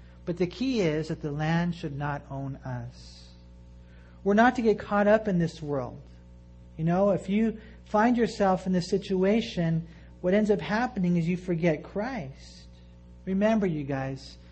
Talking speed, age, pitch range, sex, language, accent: 165 wpm, 40-59, 130-180 Hz, male, English, American